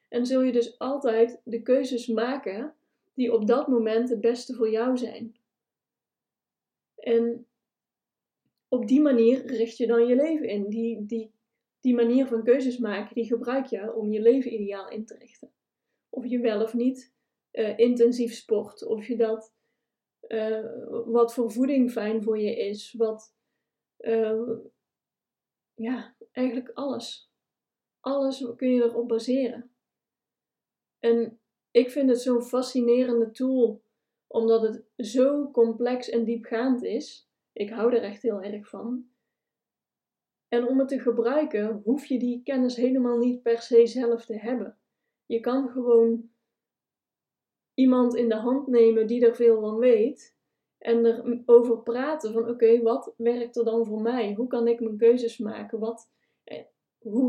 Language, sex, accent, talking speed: Dutch, female, Dutch, 150 wpm